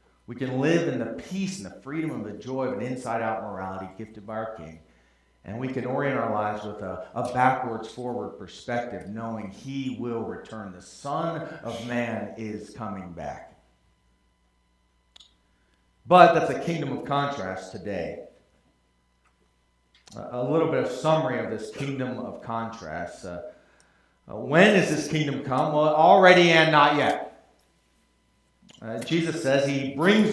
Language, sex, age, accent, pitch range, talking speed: English, male, 40-59, American, 115-170 Hz, 150 wpm